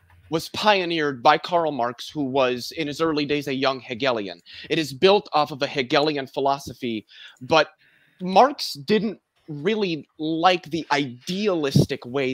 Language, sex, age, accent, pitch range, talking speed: English, male, 30-49, American, 135-185 Hz, 145 wpm